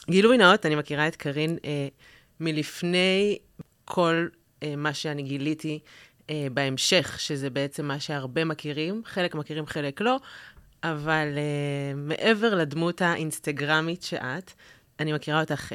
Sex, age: female, 30-49